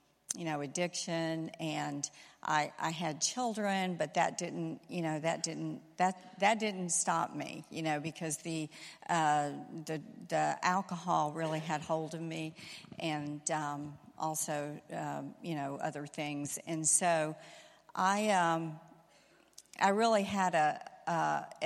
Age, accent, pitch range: 50-69, American, 155-180 Hz